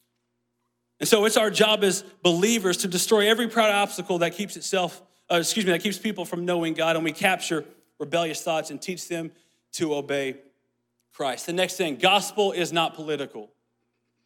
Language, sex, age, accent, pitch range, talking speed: English, male, 30-49, American, 170-240 Hz, 175 wpm